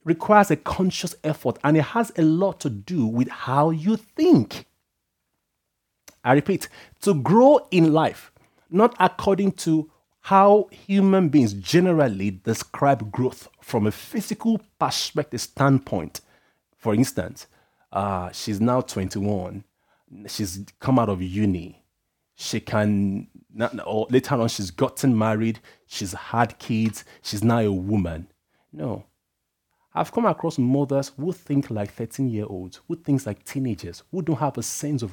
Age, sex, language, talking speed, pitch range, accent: 30-49, male, English, 135 wpm, 115-185 Hz, Nigerian